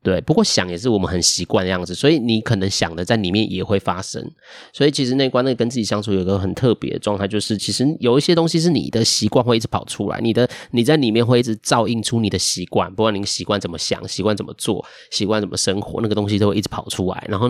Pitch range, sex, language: 95-115 Hz, male, Chinese